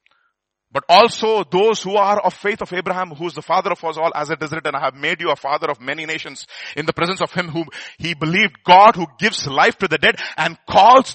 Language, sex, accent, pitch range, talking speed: English, male, Indian, 125-210 Hz, 250 wpm